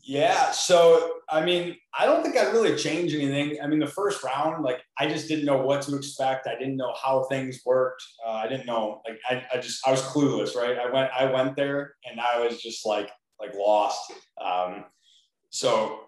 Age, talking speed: 20-39, 210 wpm